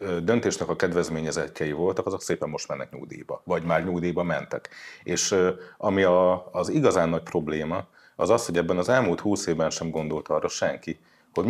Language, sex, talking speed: Hungarian, male, 170 wpm